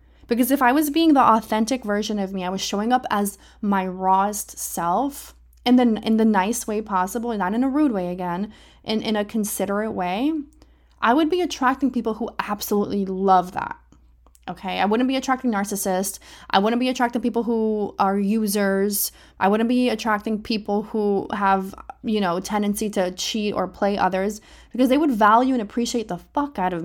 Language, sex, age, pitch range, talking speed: English, female, 20-39, 195-235 Hz, 190 wpm